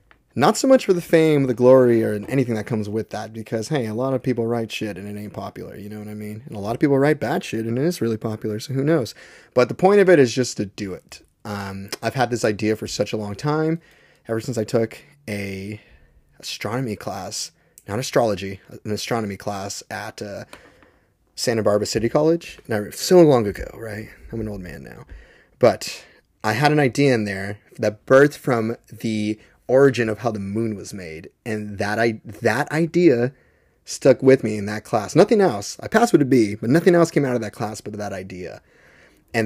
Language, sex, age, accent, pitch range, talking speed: English, male, 30-49, American, 105-125 Hz, 215 wpm